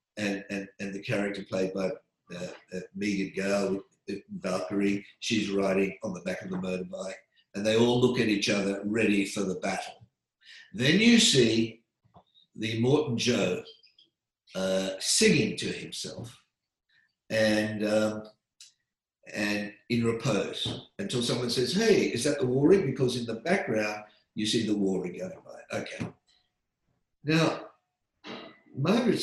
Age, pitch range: 50-69, 105-150 Hz